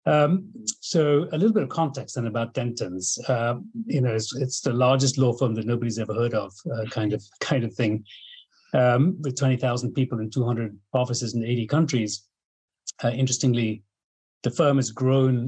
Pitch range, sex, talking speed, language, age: 110-140 Hz, male, 180 wpm, English, 40-59